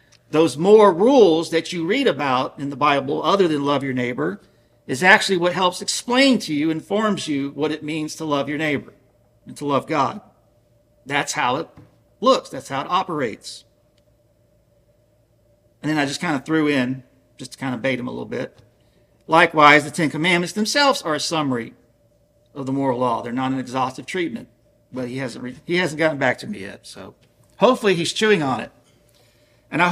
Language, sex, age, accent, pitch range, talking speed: English, male, 50-69, American, 120-170 Hz, 190 wpm